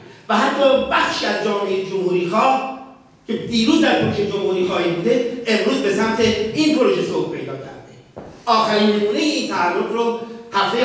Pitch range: 195-270 Hz